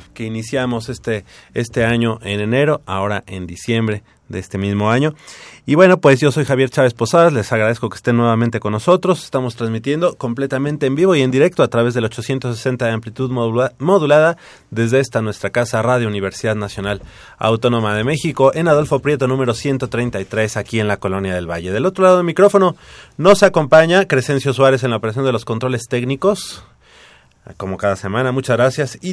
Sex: male